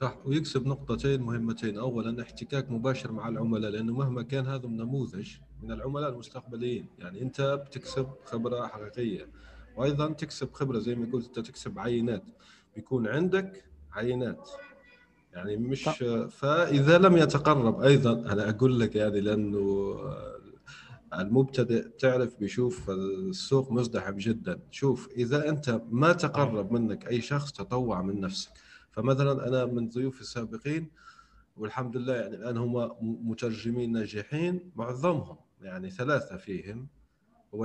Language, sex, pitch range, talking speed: Arabic, male, 110-140 Hz, 125 wpm